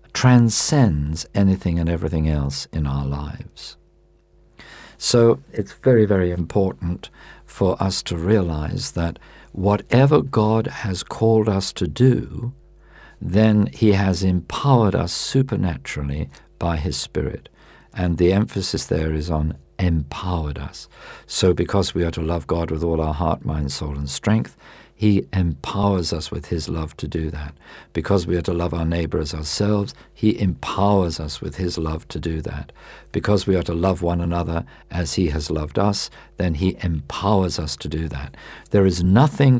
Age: 50-69